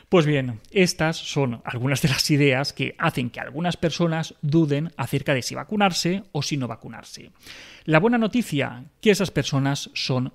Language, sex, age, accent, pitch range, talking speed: Spanish, male, 30-49, Spanish, 125-175 Hz, 175 wpm